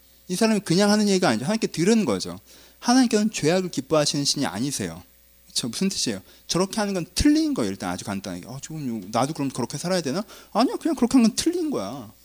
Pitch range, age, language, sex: 130-220 Hz, 30-49, Korean, male